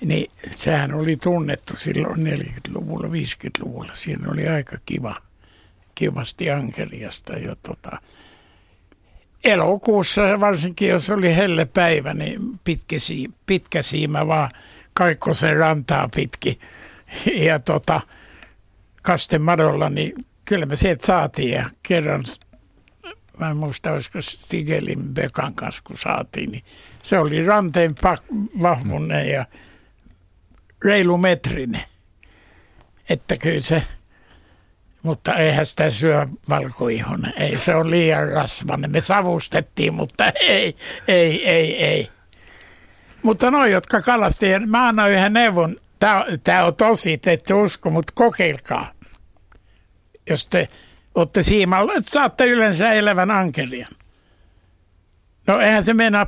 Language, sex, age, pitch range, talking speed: Finnish, male, 60-79, 125-200 Hz, 110 wpm